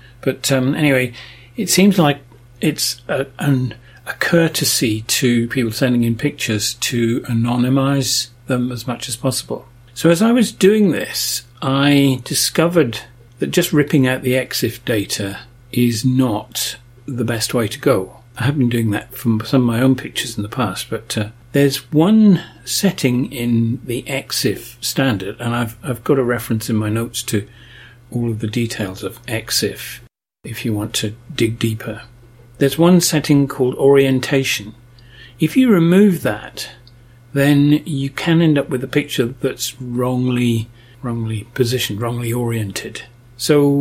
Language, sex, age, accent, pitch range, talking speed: English, male, 40-59, British, 120-140 Hz, 155 wpm